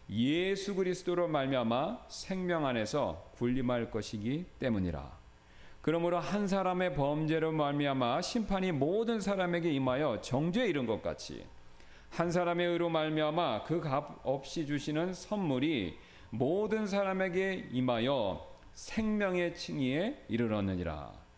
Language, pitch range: English, 125-180 Hz